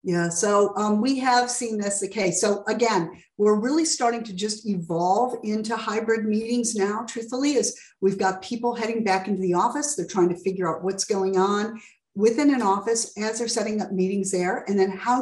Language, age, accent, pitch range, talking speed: English, 50-69, American, 195-245 Hz, 205 wpm